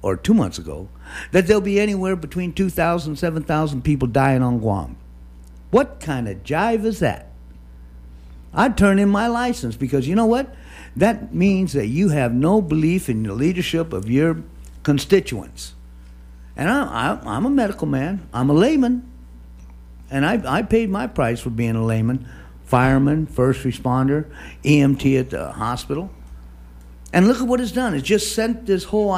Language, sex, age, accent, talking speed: English, male, 60-79, American, 170 wpm